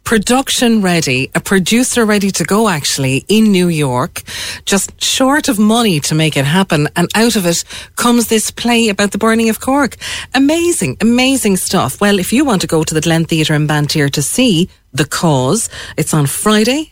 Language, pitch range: English, 145-205 Hz